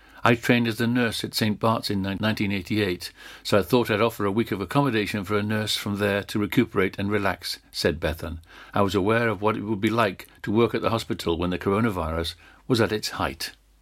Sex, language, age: male, English, 60-79